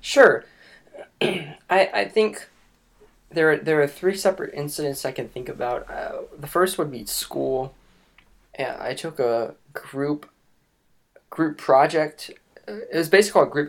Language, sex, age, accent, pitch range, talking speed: English, male, 20-39, American, 115-150 Hz, 145 wpm